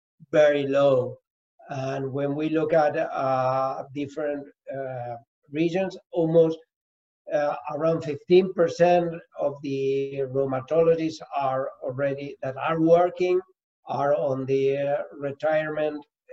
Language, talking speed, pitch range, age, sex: English, 100 wpm, 135-160 Hz, 60-79, male